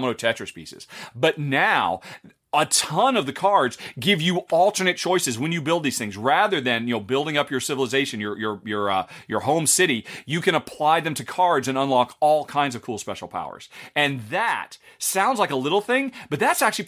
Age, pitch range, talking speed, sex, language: 40-59, 130-185 Hz, 205 wpm, male, English